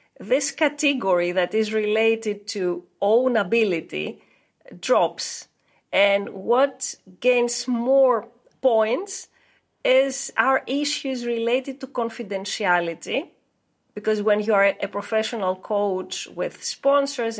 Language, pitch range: English, 205-265 Hz